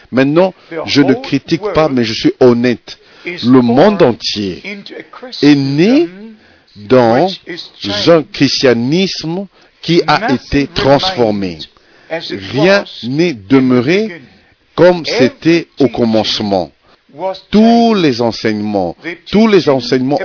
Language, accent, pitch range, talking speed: French, French, 120-165 Hz, 100 wpm